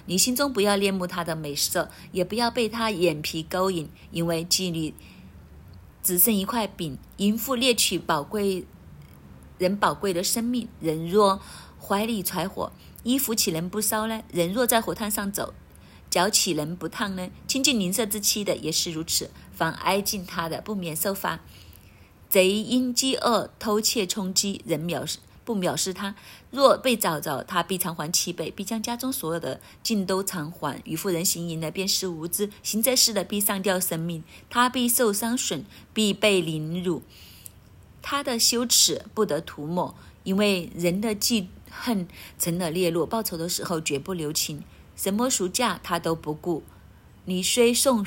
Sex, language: female, Chinese